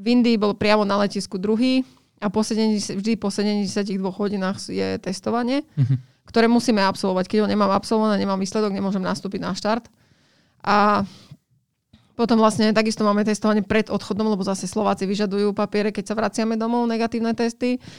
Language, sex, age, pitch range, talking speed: Slovak, female, 20-39, 195-220 Hz, 155 wpm